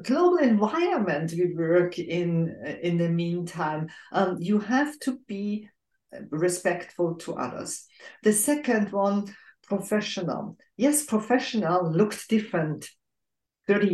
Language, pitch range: English, 180-245 Hz